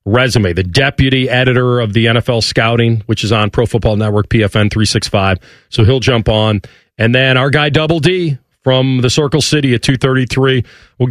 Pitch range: 115-145 Hz